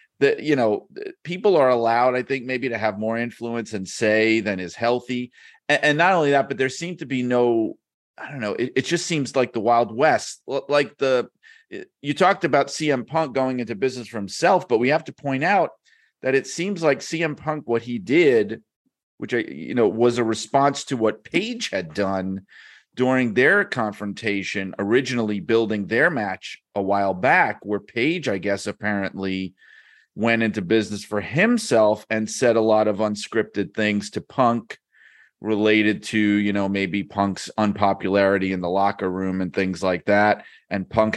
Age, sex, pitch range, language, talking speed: 40-59, male, 105-135 Hz, English, 180 wpm